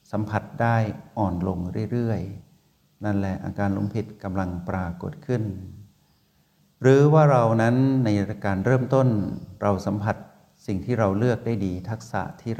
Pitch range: 95-120 Hz